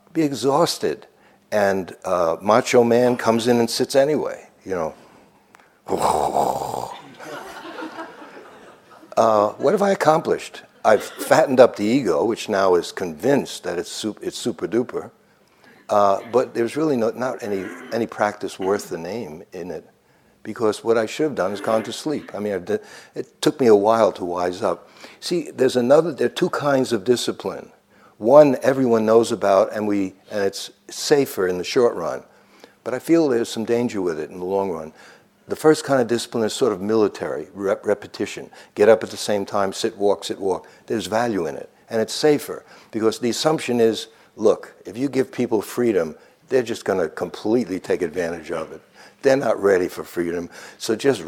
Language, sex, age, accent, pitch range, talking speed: English, male, 60-79, American, 100-130 Hz, 185 wpm